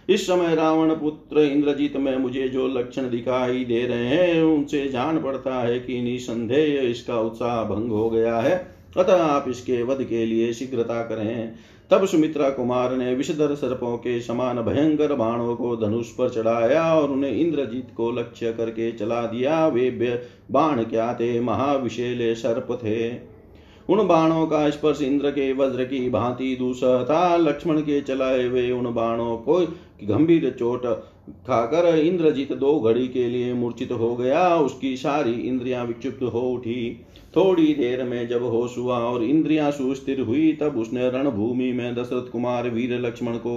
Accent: native